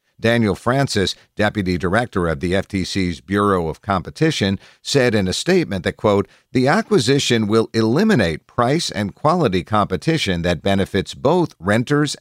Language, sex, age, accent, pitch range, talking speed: English, male, 50-69, American, 90-120 Hz, 140 wpm